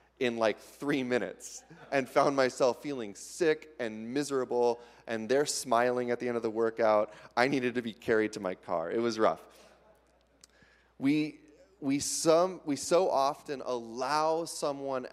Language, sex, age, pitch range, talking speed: English, male, 30-49, 115-150 Hz, 155 wpm